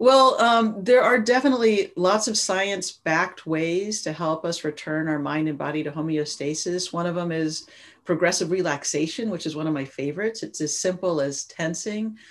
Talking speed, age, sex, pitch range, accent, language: 180 wpm, 40-59, female, 155-185 Hz, American, English